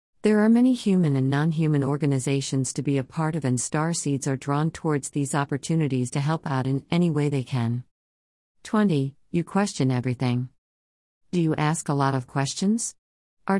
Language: English